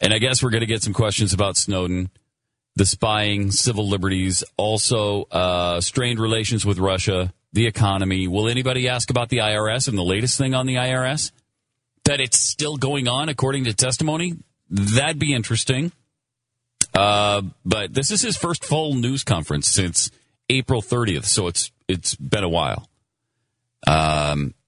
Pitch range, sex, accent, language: 95-125 Hz, male, American, English